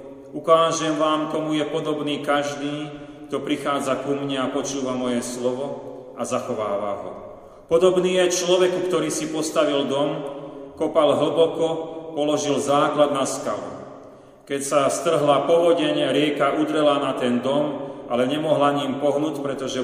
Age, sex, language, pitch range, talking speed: 40-59, male, Slovak, 125-145 Hz, 135 wpm